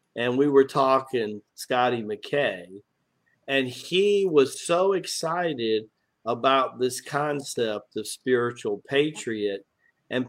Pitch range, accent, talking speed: 120-180 Hz, American, 105 wpm